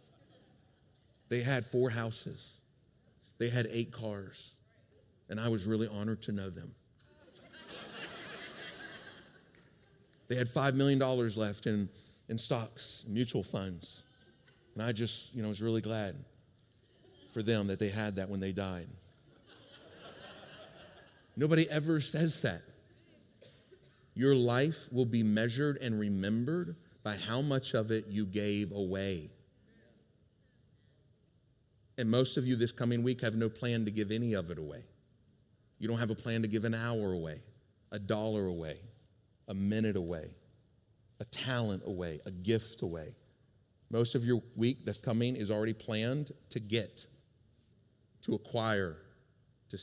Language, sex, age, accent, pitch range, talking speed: English, male, 40-59, American, 105-125 Hz, 140 wpm